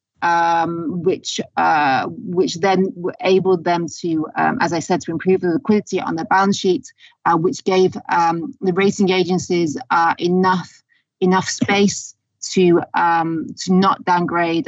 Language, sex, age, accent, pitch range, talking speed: English, female, 30-49, British, 175-200 Hz, 145 wpm